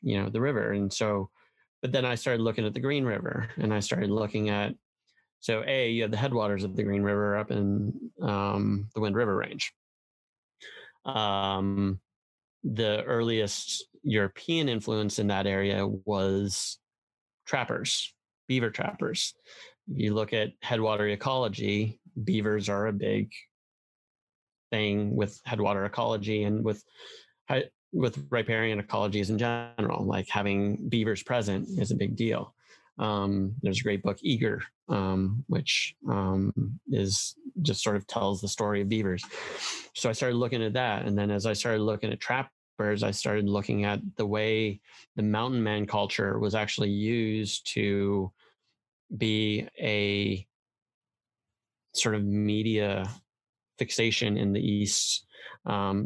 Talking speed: 145 wpm